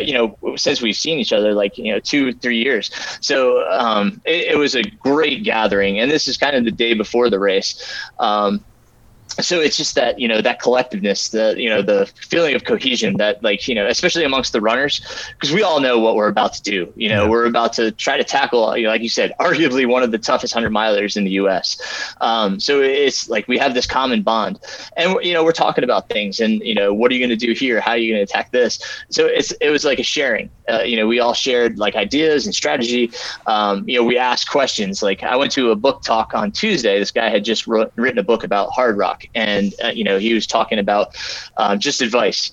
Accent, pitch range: American, 105-140 Hz